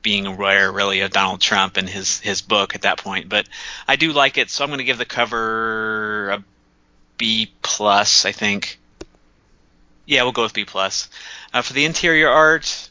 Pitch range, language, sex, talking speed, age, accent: 100-120 Hz, English, male, 190 wpm, 30-49, American